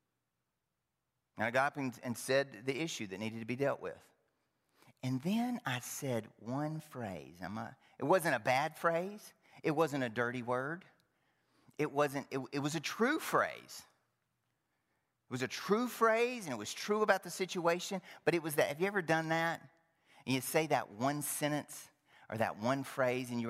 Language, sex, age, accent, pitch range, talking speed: English, male, 40-59, American, 120-175 Hz, 180 wpm